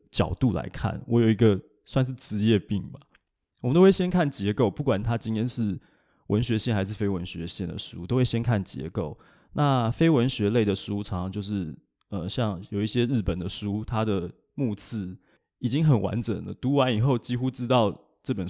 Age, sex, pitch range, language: 20-39, male, 100-135 Hz, Chinese